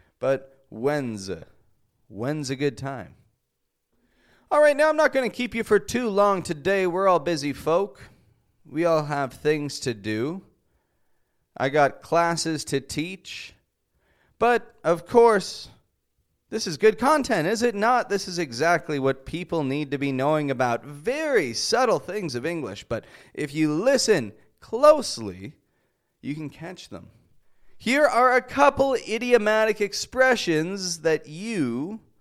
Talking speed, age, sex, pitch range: 140 wpm, 30-49, male, 140-220 Hz